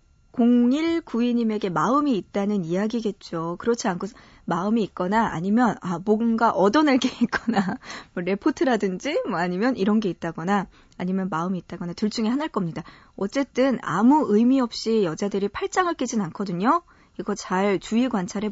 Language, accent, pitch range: Korean, native, 190-245 Hz